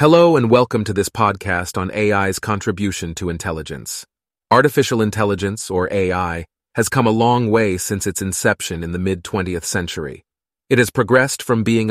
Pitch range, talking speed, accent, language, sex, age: 95-115 Hz, 160 wpm, American, Turkish, male, 30-49